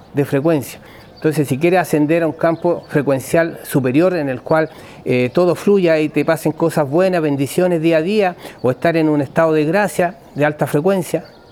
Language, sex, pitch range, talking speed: Spanish, male, 140-175 Hz, 190 wpm